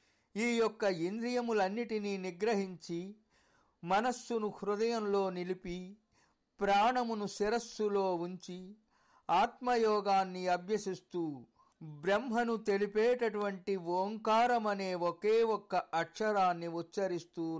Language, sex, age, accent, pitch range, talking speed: Telugu, male, 50-69, native, 175-205 Hz, 65 wpm